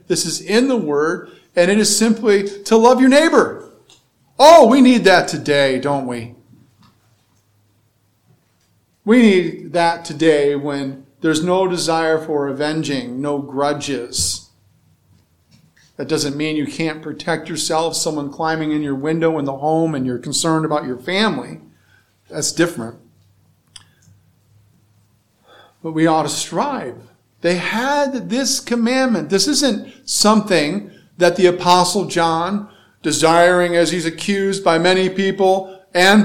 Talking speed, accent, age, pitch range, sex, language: 130 wpm, American, 40-59, 140-195 Hz, male, English